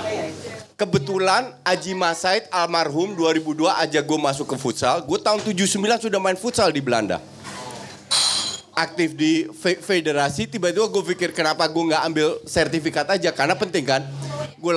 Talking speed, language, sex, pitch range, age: 140 wpm, Indonesian, male, 145-195 Hz, 30-49